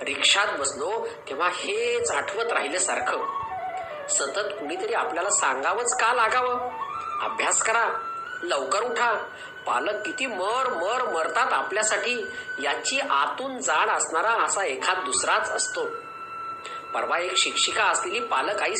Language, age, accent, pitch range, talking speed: Marathi, 40-59, native, 330-455 Hz, 120 wpm